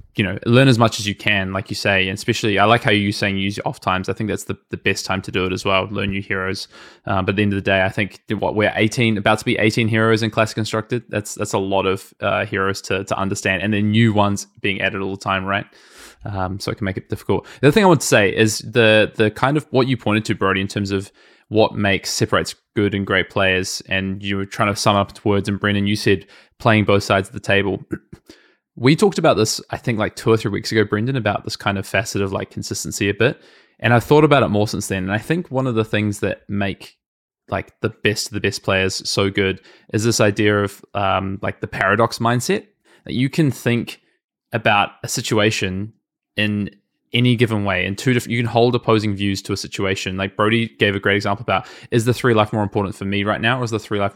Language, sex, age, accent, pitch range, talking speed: English, male, 20-39, Australian, 100-115 Hz, 255 wpm